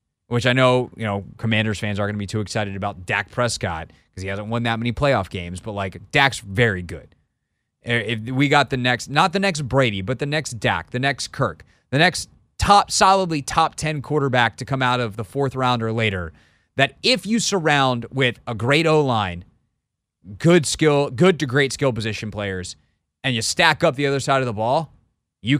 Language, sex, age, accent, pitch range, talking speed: English, male, 30-49, American, 110-145 Hz, 210 wpm